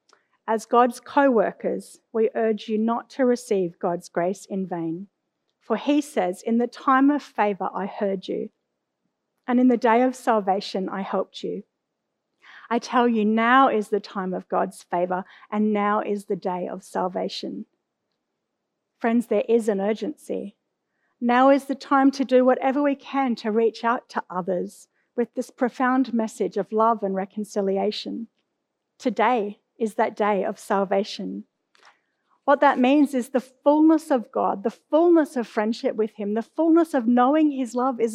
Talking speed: 165 wpm